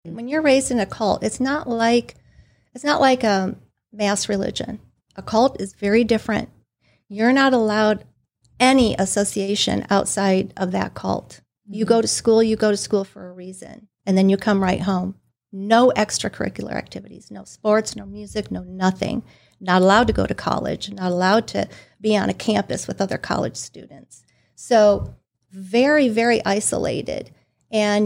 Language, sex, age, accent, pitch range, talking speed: English, female, 50-69, American, 195-230 Hz, 165 wpm